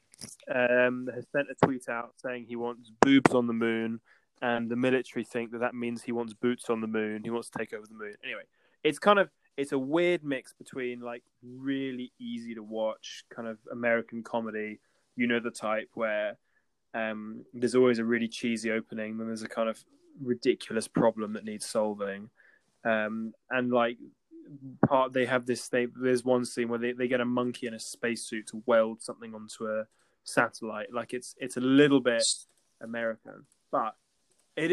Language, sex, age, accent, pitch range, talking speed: English, male, 20-39, British, 115-130 Hz, 185 wpm